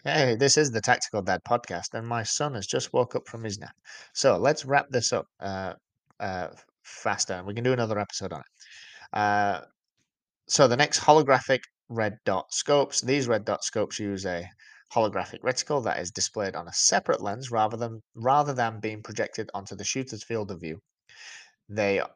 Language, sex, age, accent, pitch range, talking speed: English, male, 20-39, British, 100-130 Hz, 185 wpm